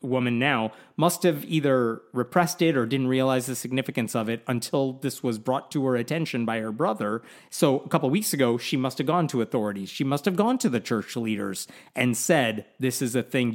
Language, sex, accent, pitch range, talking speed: English, male, American, 120-160 Hz, 220 wpm